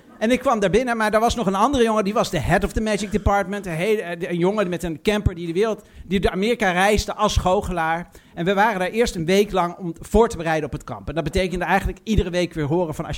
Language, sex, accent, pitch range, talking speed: Dutch, male, Dutch, 165-210 Hz, 280 wpm